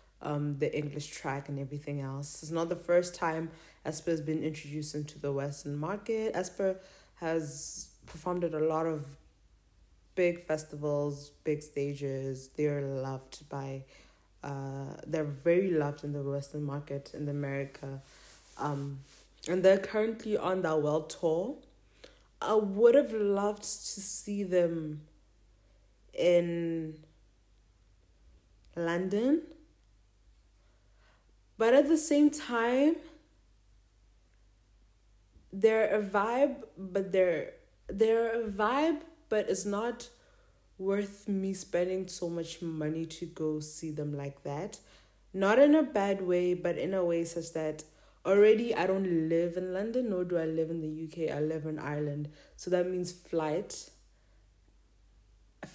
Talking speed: 130 wpm